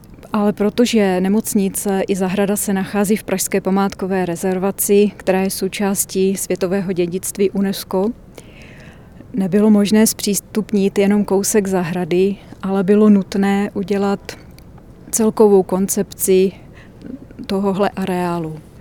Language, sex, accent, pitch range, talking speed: Czech, female, native, 190-205 Hz, 100 wpm